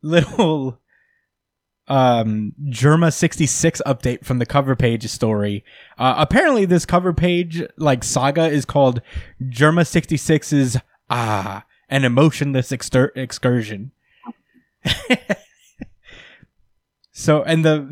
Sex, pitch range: male, 115-145 Hz